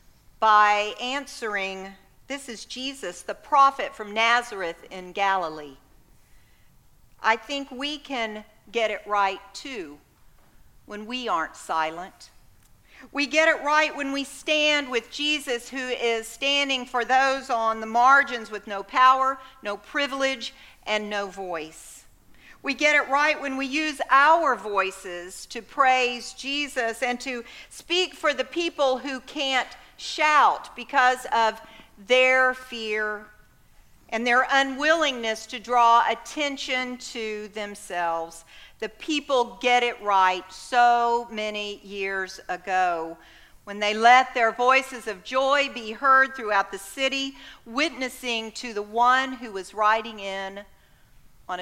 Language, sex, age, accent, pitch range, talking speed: English, female, 50-69, American, 205-270 Hz, 130 wpm